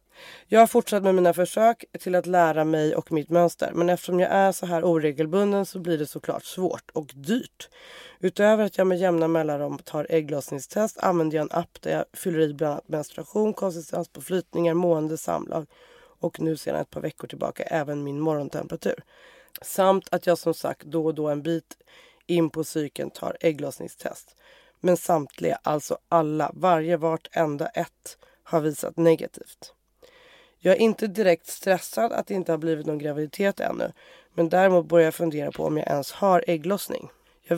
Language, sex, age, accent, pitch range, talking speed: English, female, 30-49, Swedish, 155-190 Hz, 175 wpm